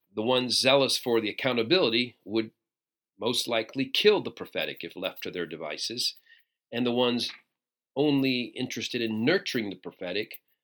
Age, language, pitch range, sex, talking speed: 40-59, English, 105-130 Hz, male, 145 wpm